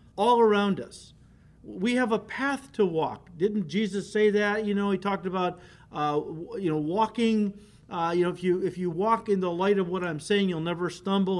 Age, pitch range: 50-69, 180-245 Hz